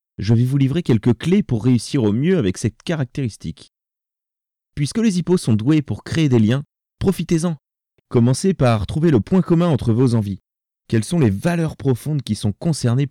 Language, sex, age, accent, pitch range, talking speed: French, male, 30-49, French, 110-160 Hz, 185 wpm